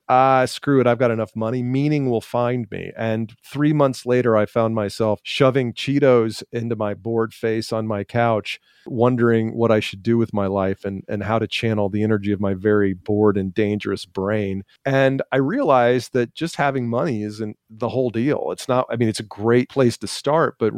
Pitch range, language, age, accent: 105-125 Hz, English, 40-59, American